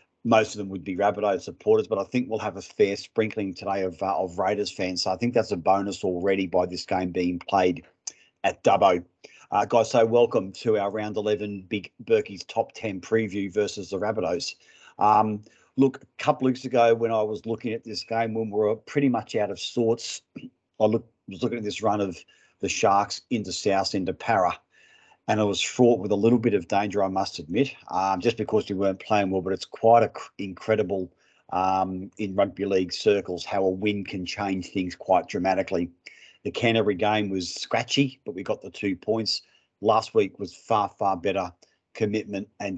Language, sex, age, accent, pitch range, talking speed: English, male, 40-59, Australian, 95-115 Hz, 200 wpm